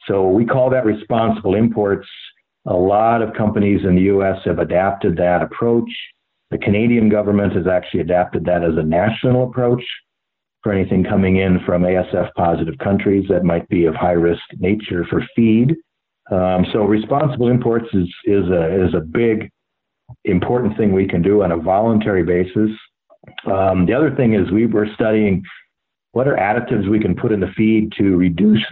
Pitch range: 90-110 Hz